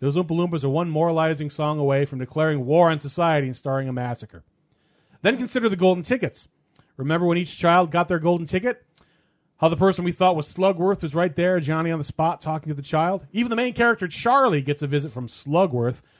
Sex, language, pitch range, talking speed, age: male, English, 145-185 Hz, 215 wpm, 30-49